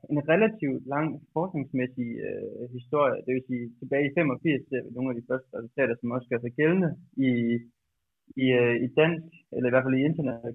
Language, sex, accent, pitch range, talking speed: Danish, male, native, 125-150 Hz, 200 wpm